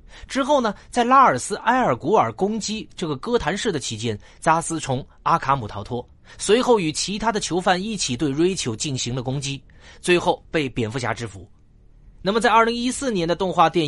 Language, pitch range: Chinese, 125-205 Hz